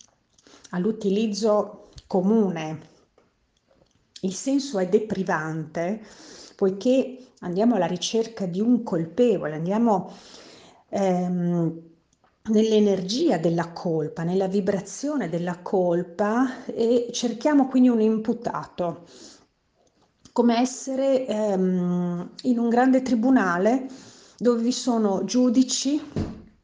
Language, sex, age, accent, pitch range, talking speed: Italian, female, 40-59, native, 175-235 Hz, 85 wpm